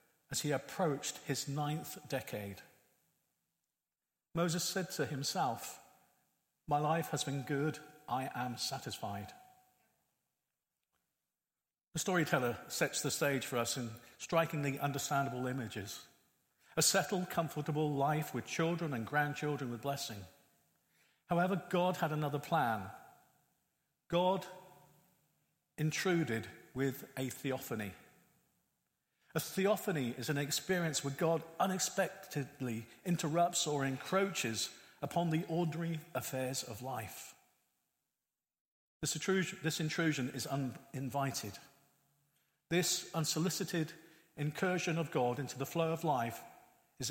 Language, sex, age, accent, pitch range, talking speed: English, male, 50-69, British, 135-170 Hz, 105 wpm